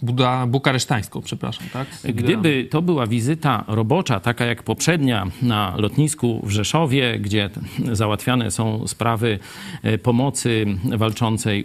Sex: male